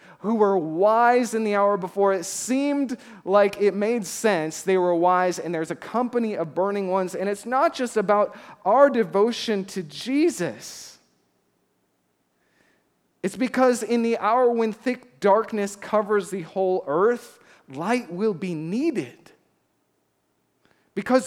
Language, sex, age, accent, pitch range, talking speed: English, male, 40-59, American, 150-230 Hz, 140 wpm